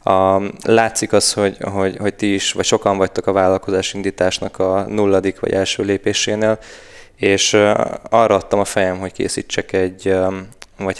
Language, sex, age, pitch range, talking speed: Hungarian, male, 20-39, 95-100 Hz, 155 wpm